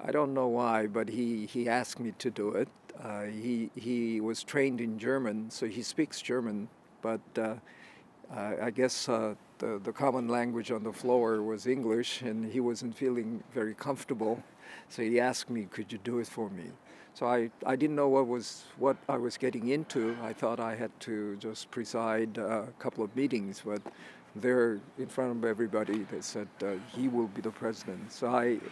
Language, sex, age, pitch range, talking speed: English, male, 50-69, 110-130 Hz, 200 wpm